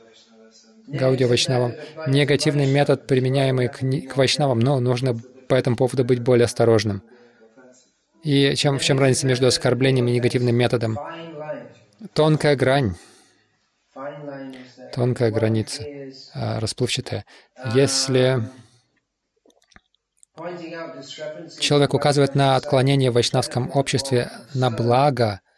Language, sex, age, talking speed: Russian, male, 20-39, 100 wpm